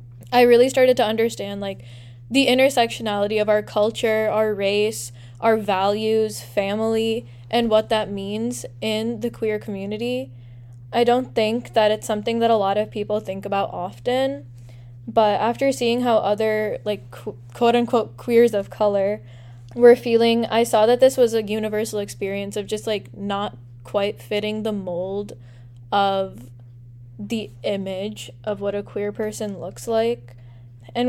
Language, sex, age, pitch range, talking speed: English, female, 10-29, 190-225 Hz, 150 wpm